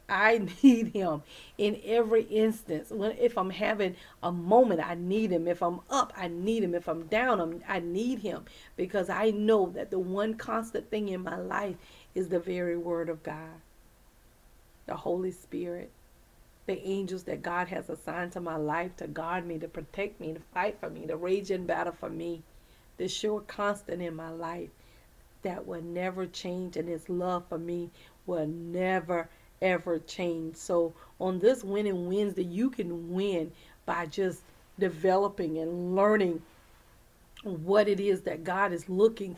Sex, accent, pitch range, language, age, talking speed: female, American, 170-200 Hz, English, 40-59, 175 wpm